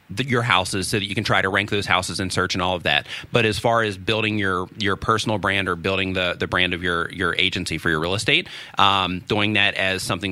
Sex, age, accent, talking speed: male, 30-49, American, 255 wpm